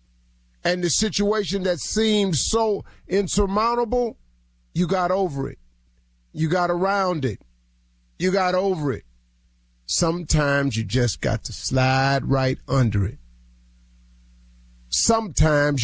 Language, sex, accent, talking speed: English, male, American, 110 wpm